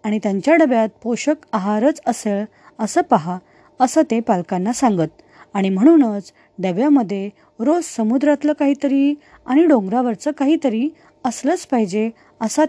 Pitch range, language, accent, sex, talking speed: 215-280 Hz, Marathi, native, female, 120 wpm